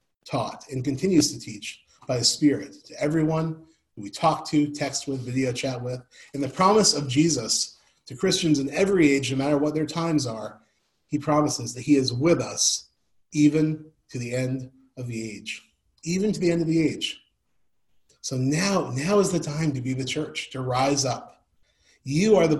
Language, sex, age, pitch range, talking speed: English, male, 30-49, 130-160 Hz, 190 wpm